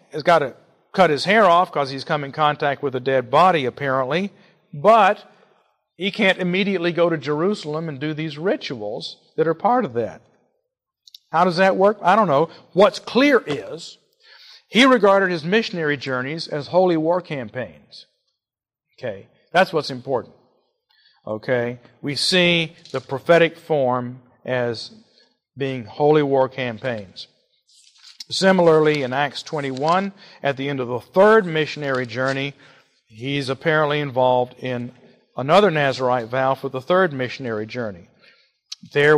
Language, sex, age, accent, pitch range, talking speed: English, male, 50-69, American, 135-175 Hz, 140 wpm